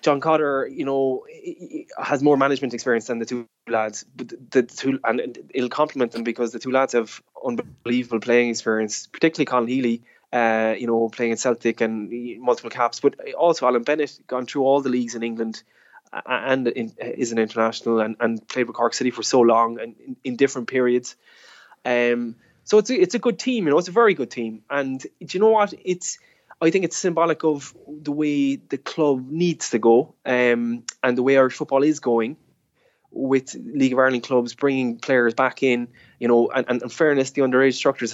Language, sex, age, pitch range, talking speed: English, male, 20-39, 120-140 Hz, 200 wpm